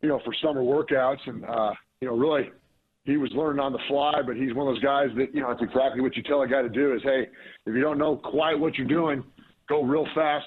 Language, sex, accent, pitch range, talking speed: English, male, American, 120-140 Hz, 270 wpm